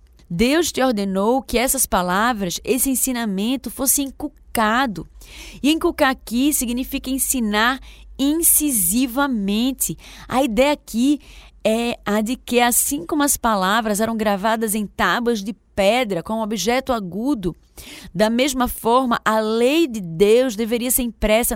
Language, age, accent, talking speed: Portuguese, 20-39, Brazilian, 130 wpm